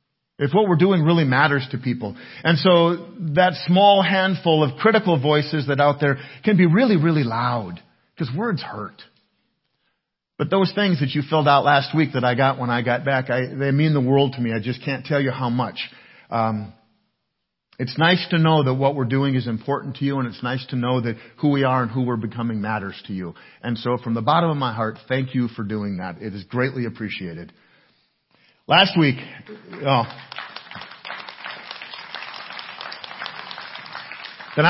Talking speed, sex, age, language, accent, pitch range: 180 wpm, male, 50-69, English, American, 125-180 Hz